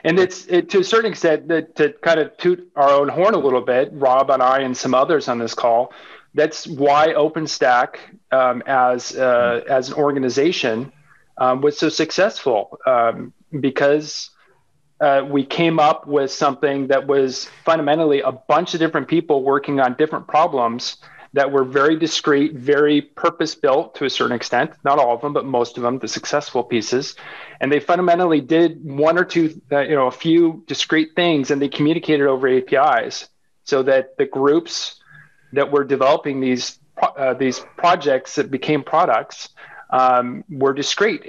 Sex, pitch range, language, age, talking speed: male, 135-165 Hz, English, 30-49, 170 wpm